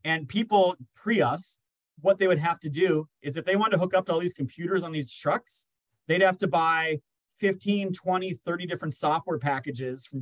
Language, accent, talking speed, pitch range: English, American, 205 wpm, 150-190 Hz